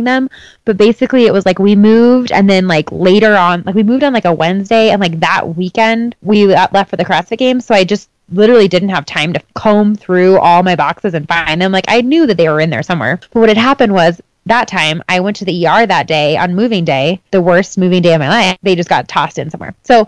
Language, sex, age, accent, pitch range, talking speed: English, female, 20-39, American, 180-220 Hz, 255 wpm